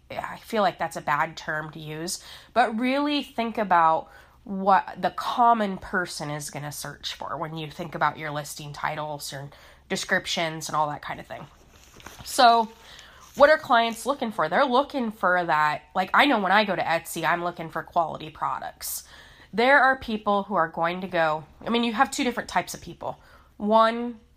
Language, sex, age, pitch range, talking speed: English, female, 20-39, 160-200 Hz, 195 wpm